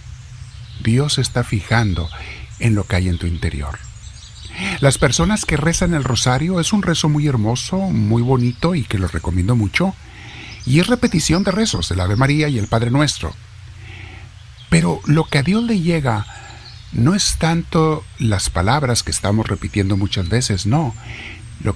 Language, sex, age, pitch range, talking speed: Spanish, male, 50-69, 95-120 Hz, 165 wpm